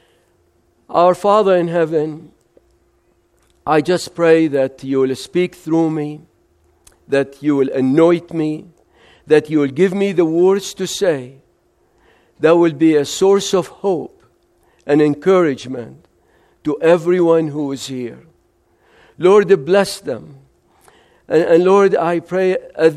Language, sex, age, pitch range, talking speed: English, male, 50-69, 140-195 Hz, 130 wpm